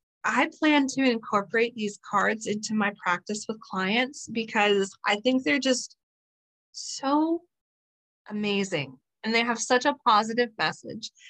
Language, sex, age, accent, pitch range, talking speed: English, female, 30-49, American, 205-250 Hz, 135 wpm